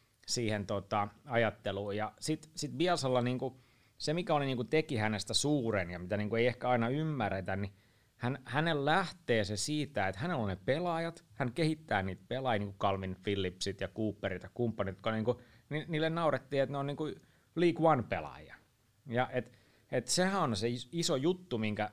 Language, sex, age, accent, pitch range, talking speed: Finnish, male, 30-49, native, 105-135 Hz, 170 wpm